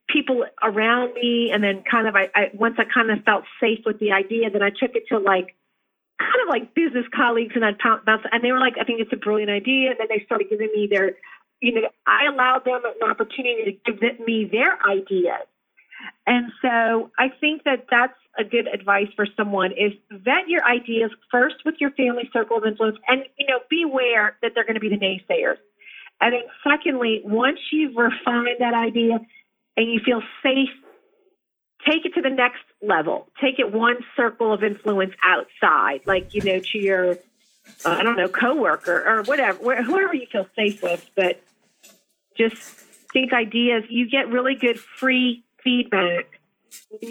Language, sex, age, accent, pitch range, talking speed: English, female, 40-59, American, 210-255 Hz, 185 wpm